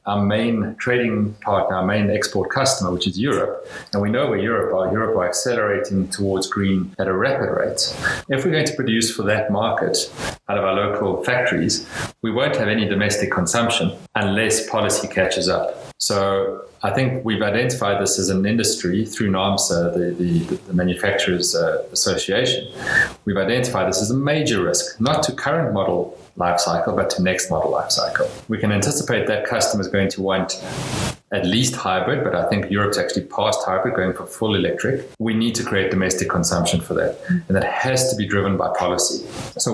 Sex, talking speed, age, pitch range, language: male, 185 wpm, 30-49, 95-115 Hz, English